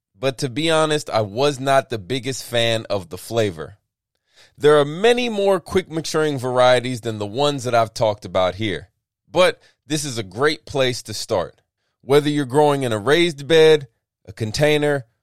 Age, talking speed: 20-39, 175 wpm